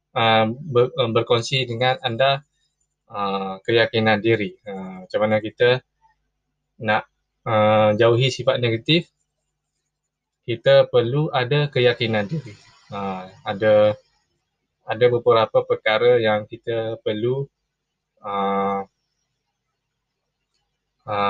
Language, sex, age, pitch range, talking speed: Malay, male, 20-39, 105-145 Hz, 90 wpm